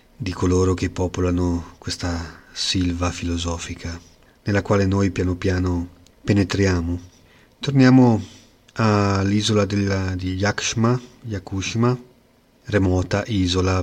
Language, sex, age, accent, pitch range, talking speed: Italian, male, 30-49, native, 90-110 Hz, 85 wpm